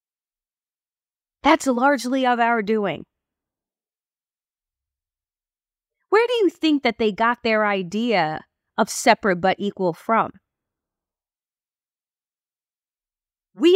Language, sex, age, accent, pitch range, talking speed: English, female, 30-49, American, 240-350 Hz, 85 wpm